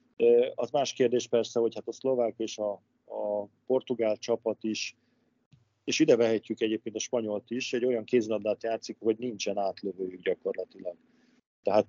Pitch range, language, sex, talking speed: 100-115 Hz, Hungarian, male, 150 wpm